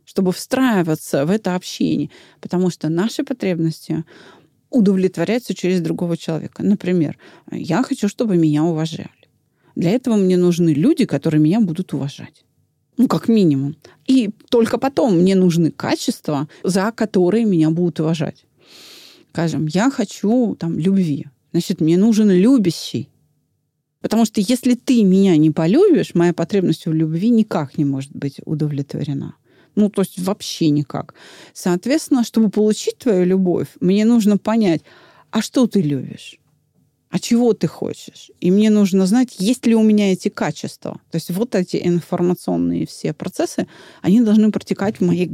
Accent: native